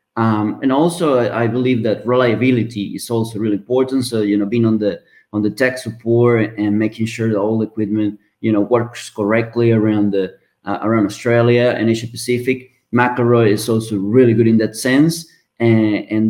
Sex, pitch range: male, 105-125 Hz